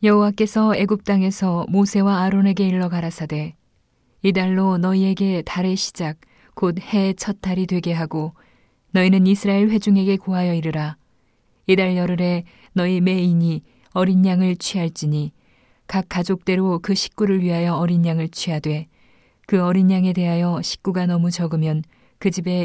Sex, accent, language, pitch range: female, native, Korean, 165-190 Hz